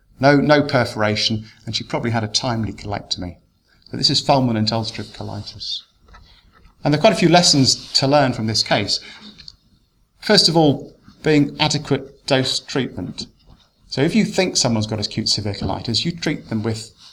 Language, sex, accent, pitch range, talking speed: English, male, British, 105-135 Hz, 170 wpm